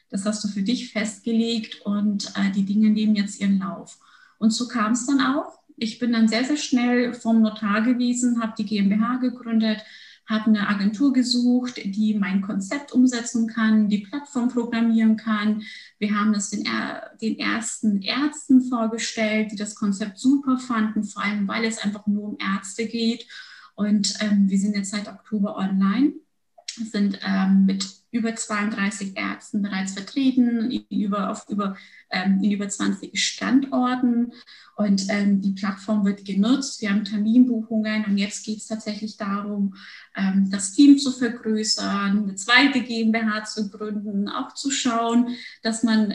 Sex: female